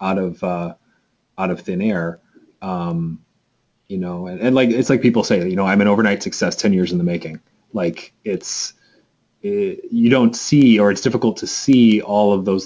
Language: English